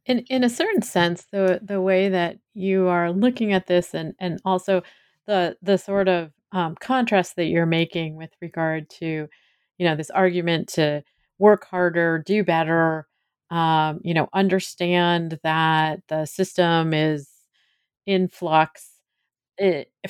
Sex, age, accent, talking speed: female, 30-49, American, 145 wpm